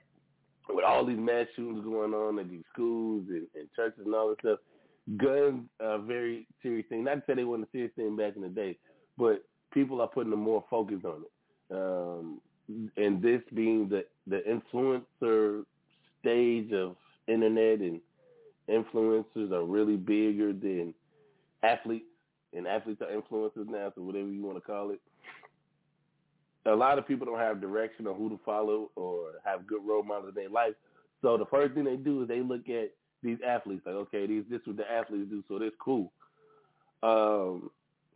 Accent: American